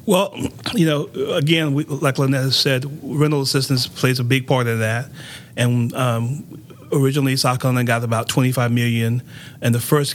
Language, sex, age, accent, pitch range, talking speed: English, male, 30-49, American, 115-135 Hz, 165 wpm